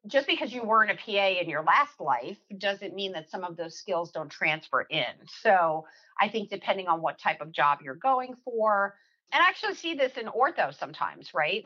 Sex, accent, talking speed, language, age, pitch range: female, American, 210 wpm, English, 40-59, 165-220 Hz